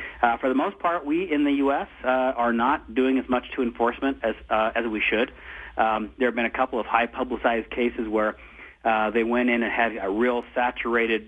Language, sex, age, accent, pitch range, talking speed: English, male, 40-59, American, 110-125 Hz, 225 wpm